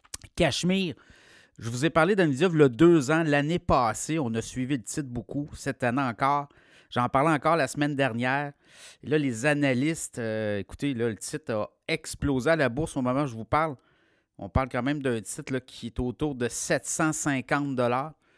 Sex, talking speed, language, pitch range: male, 195 wpm, French, 125-155 Hz